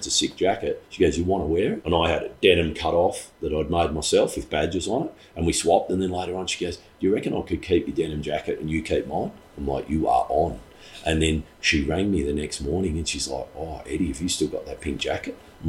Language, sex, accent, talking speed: English, male, Australian, 285 wpm